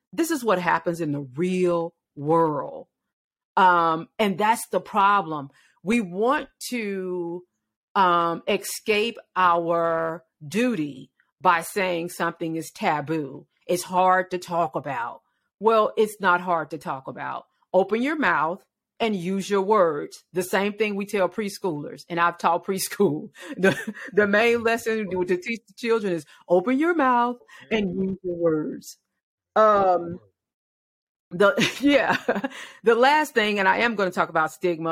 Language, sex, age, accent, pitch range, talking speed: English, female, 40-59, American, 165-215 Hz, 145 wpm